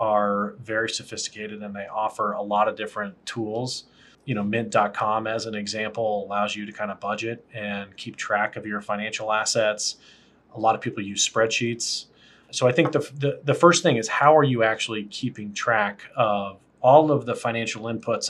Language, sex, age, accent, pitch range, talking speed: English, male, 30-49, American, 105-125 Hz, 185 wpm